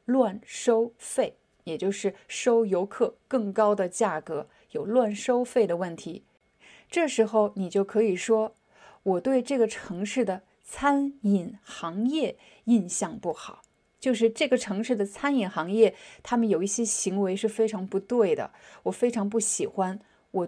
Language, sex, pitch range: Chinese, female, 195-245 Hz